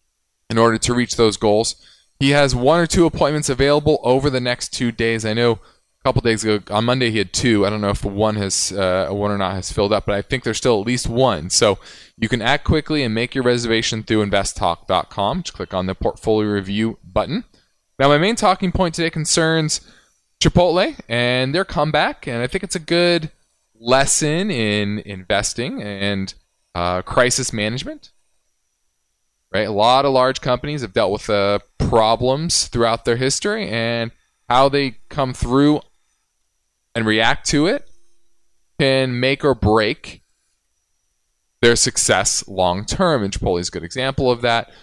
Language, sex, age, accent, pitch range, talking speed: English, male, 20-39, American, 105-140 Hz, 175 wpm